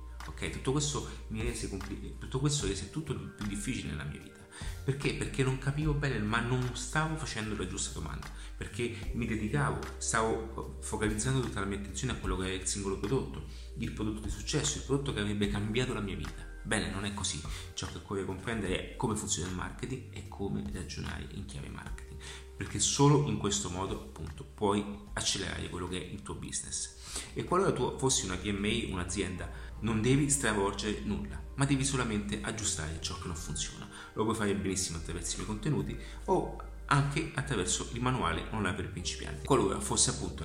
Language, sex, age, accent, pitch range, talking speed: Italian, male, 30-49, native, 75-110 Hz, 185 wpm